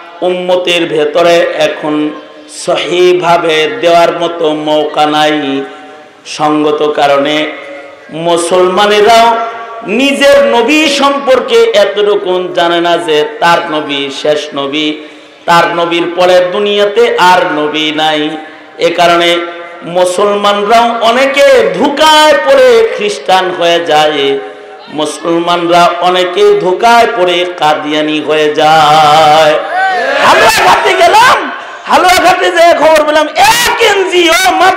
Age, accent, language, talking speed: 50-69, native, Bengali, 70 wpm